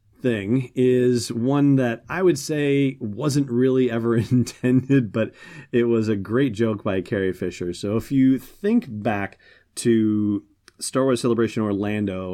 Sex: male